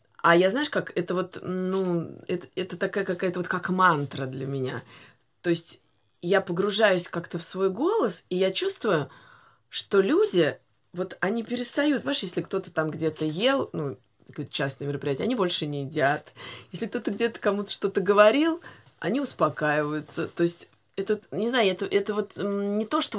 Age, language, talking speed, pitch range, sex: 20-39, Russian, 170 wpm, 155-210 Hz, female